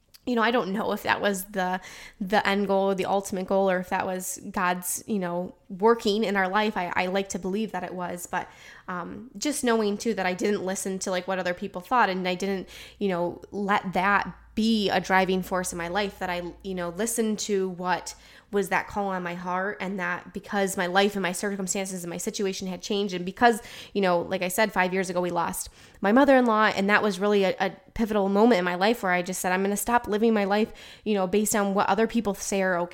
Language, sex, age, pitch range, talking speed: English, female, 10-29, 185-225 Hz, 240 wpm